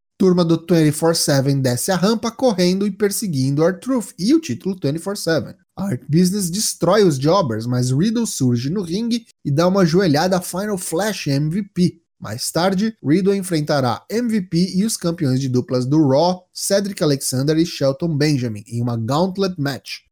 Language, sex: Portuguese, male